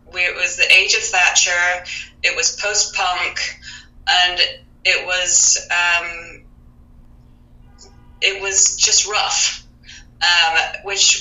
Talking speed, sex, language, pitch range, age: 100 wpm, female, English, 145-195 Hz, 30-49